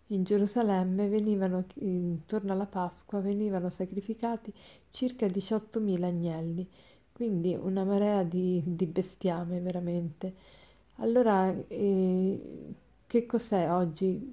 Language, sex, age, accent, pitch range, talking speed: Italian, female, 40-59, native, 185-225 Hz, 95 wpm